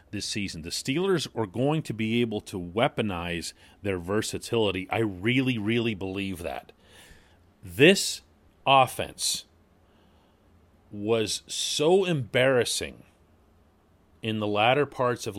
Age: 40-59